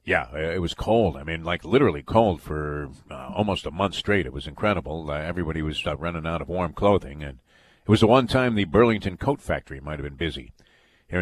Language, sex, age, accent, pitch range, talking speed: English, male, 50-69, American, 85-115 Hz, 225 wpm